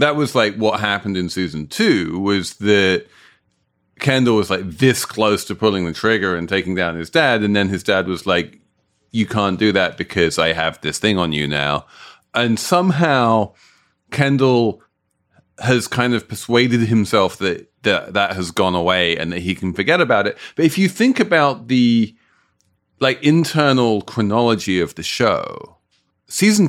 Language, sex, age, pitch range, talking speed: English, male, 30-49, 95-135 Hz, 170 wpm